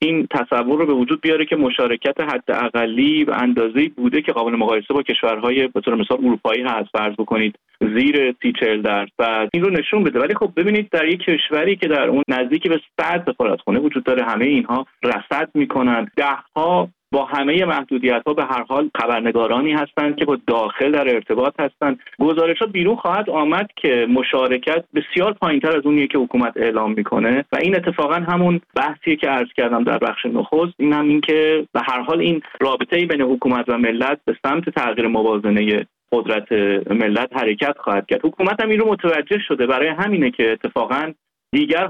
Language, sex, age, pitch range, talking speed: Persian, male, 30-49, 120-165 Hz, 175 wpm